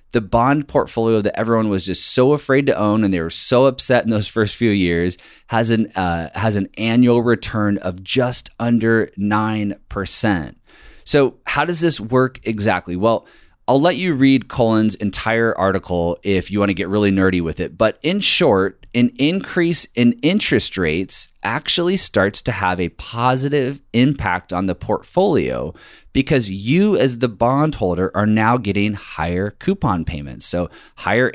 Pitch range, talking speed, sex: 95-125 Hz, 165 wpm, male